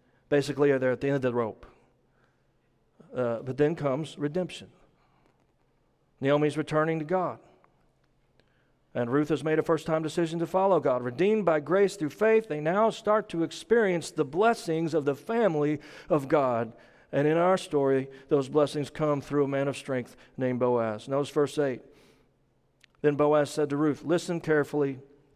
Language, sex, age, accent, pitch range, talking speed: English, male, 40-59, American, 135-165 Hz, 160 wpm